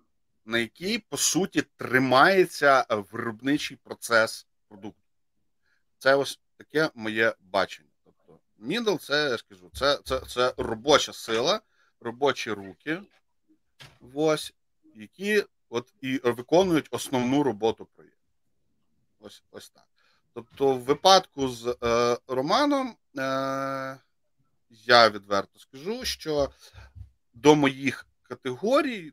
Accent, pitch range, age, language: native, 120-155 Hz, 40-59, Ukrainian